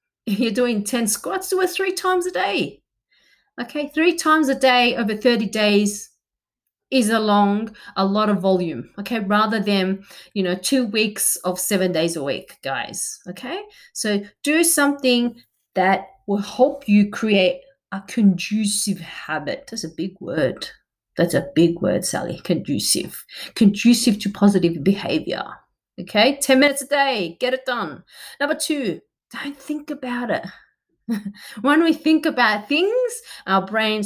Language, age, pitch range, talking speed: English, 30-49, 205-315 Hz, 150 wpm